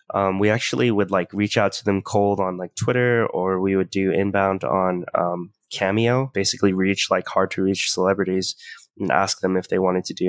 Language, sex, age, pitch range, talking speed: English, male, 20-39, 95-110 Hz, 210 wpm